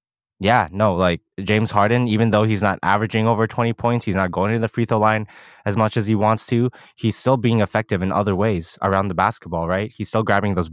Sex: male